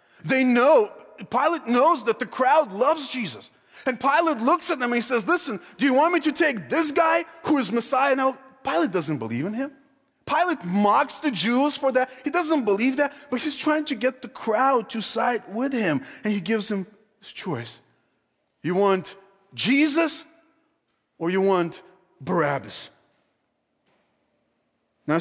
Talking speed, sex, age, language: 165 wpm, male, 30-49, English